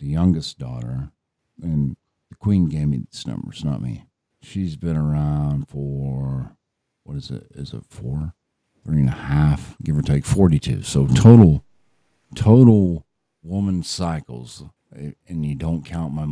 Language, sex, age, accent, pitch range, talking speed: English, male, 50-69, American, 70-85 Hz, 150 wpm